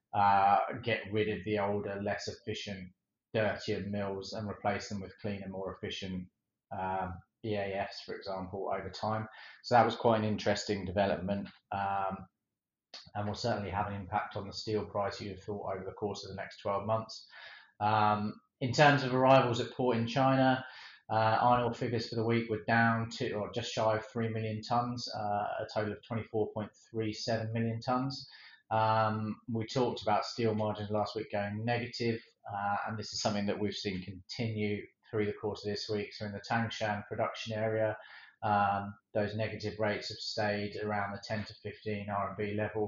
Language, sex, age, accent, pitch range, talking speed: English, male, 30-49, British, 100-110 Hz, 180 wpm